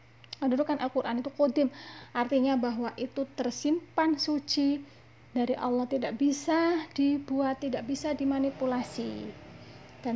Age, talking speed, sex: 30-49, 100 wpm, female